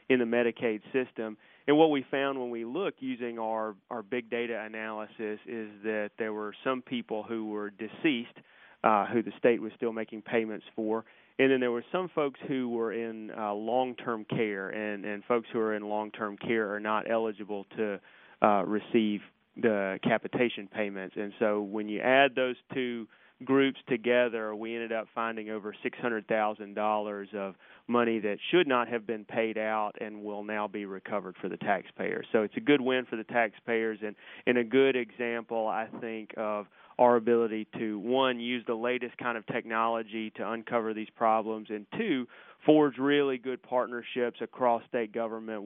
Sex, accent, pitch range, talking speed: male, American, 105-120 Hz, 175 wpm